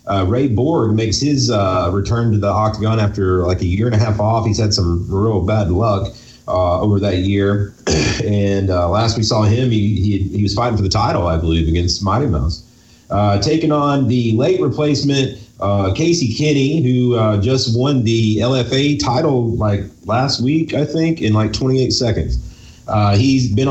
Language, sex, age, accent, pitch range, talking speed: English, male, 30-49, American, 100-125 Hz, 190 wpm